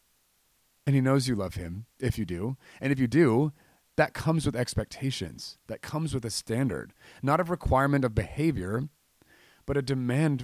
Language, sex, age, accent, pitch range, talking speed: English, male, 30-49, American, 105-135 Hz, 170 wpm